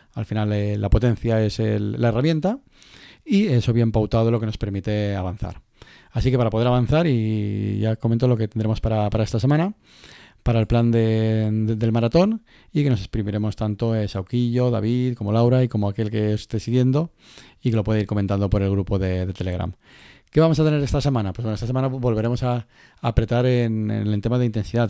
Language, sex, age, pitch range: Spanish, male, 30-49, 110-130 Hz